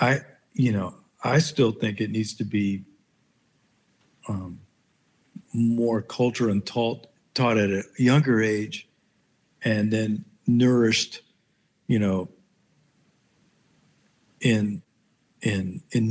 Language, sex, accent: English, male, American